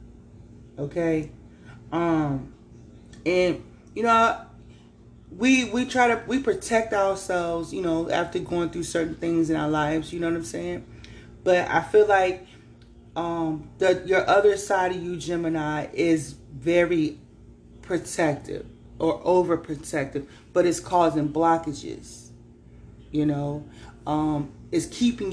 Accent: American